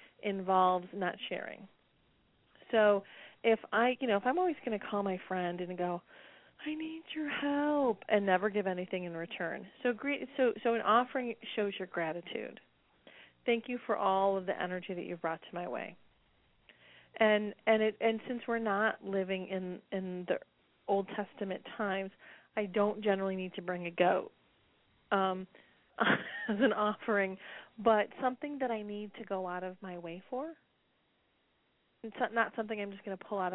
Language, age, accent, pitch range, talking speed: English, 30-49, American, 185-225 Hz, 175 wpm